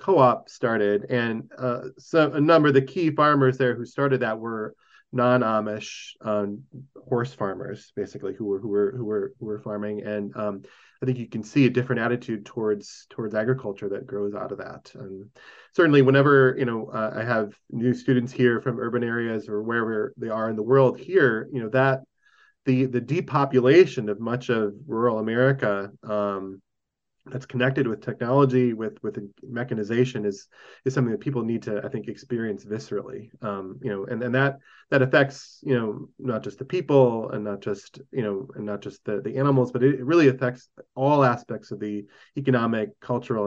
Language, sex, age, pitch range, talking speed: English, male, 20-39, 110-130 Hz, 190 wpm